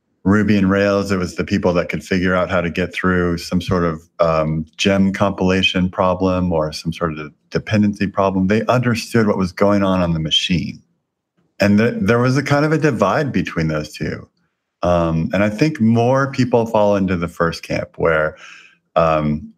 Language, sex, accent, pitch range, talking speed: English, male, American, 85-105 Hz, 185 wpm